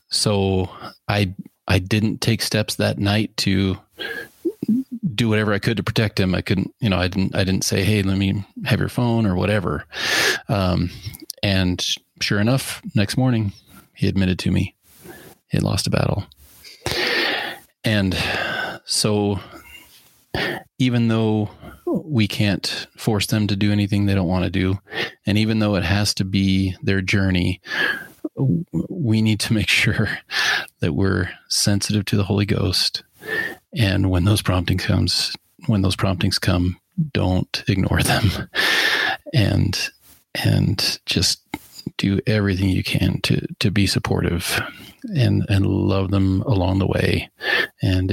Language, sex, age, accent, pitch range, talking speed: English, male, 30-49, American, 95-115 Hz, 145 wpm